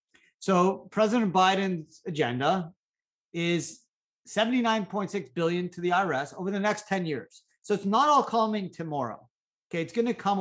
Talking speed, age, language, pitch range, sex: 150 wpm, 50-69, English, 140-195 Hz, male